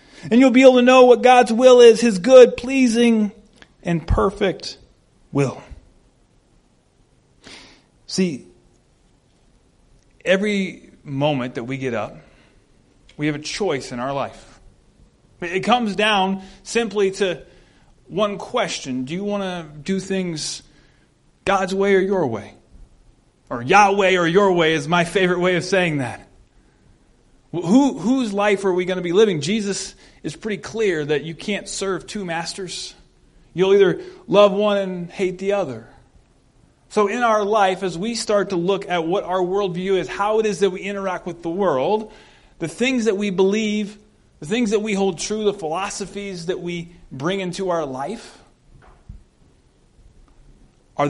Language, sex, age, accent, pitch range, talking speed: English, male, 30-49, American, 165-210 Hz, 150 wpm